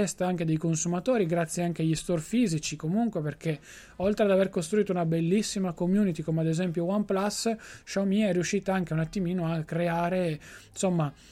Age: 20-39